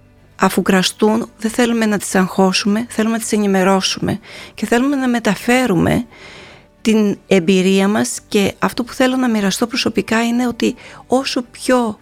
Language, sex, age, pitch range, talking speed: Greek, female, 30-49, 190-235 Hz, 145 wpm